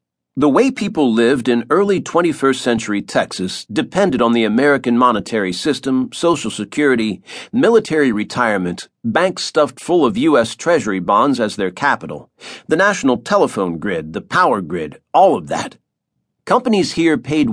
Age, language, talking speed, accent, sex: 50-69, English, 145 wpm, American, male